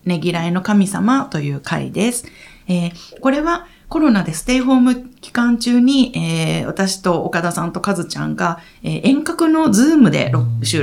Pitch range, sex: 175-240 Hz, female